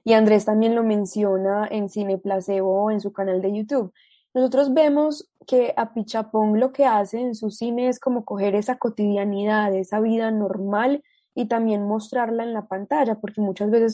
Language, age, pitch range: Spanish, 20-39, 200-235 Hz